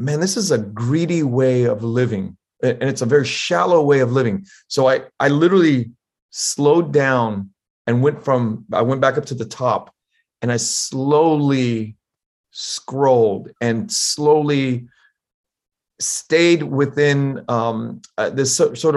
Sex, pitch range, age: male, 130-170 Hz, 30-49